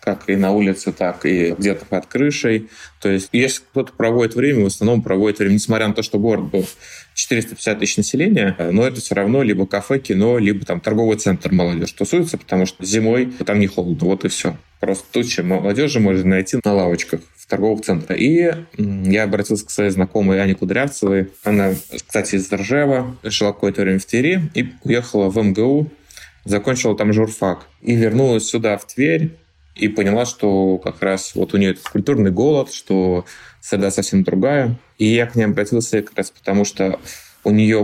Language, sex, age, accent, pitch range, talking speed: Russian, male, 20-39, native, 95-115 Hz, 180 wpm